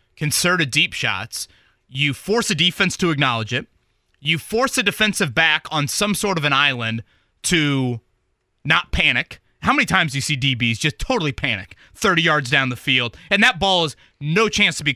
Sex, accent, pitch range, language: male, American, 120-180 Hz, English